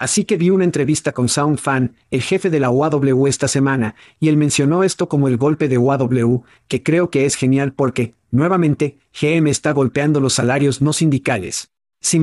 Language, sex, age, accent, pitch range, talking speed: Spanish, male, 50-69, Mexican, 130-155 Hz, 185 wpm